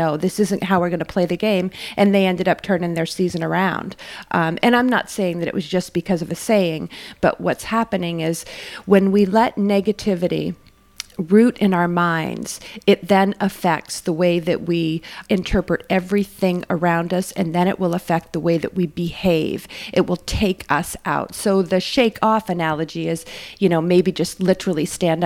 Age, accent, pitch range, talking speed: 40-59, American, 170-200 Hz, 190 wpm